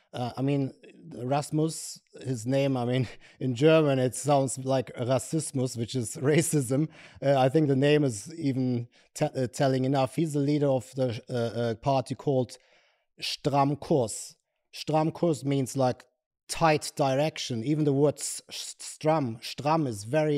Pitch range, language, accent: 130-155 Hz, English, German